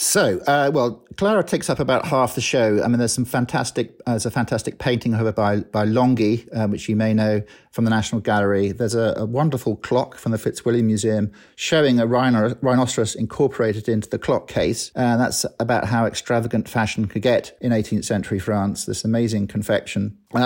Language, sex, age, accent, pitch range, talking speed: English, male, 50-69, British, 110-125 Hz, 200 wpm